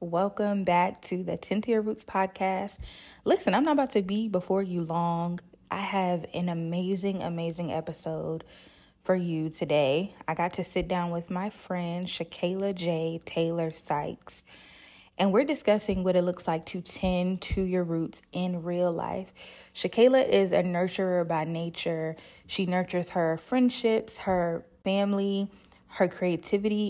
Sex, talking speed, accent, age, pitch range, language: female, 150 wpm, American, 20-39, 170-195 Hz, English